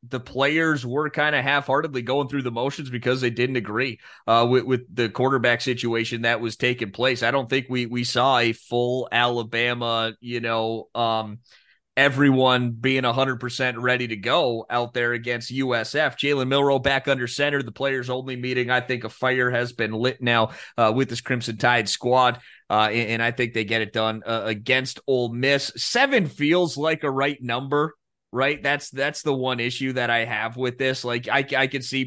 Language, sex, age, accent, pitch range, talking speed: English, male, 30-49, American, 115-135 Hz, 195 wpm